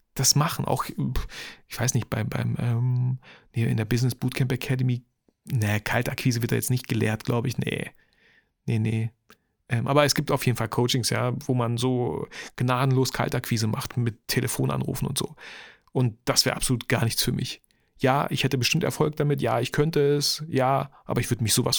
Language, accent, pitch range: German, German, 120-145 Hz